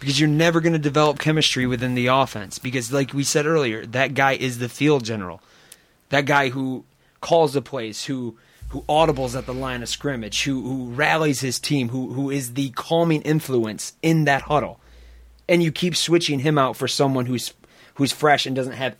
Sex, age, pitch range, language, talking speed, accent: male, 30-49, 125-170 Hz, English, 200 wpm, American